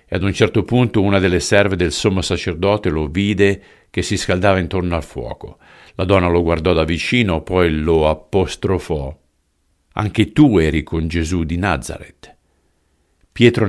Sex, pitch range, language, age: male, 75-95 Hz, Italian, 50-69